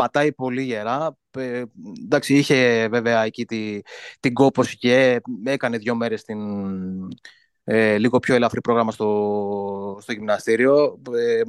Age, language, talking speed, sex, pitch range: 20-39, Greek, 130 wpm, male, 115-155 Hz